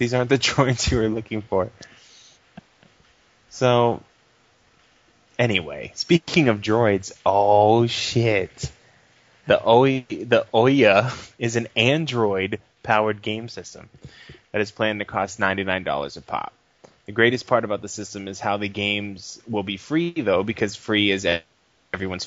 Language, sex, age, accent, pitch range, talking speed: English, male, 20-39, American, 100-115 Hz, 145 wpm